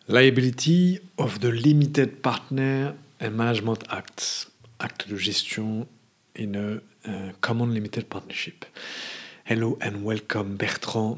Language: English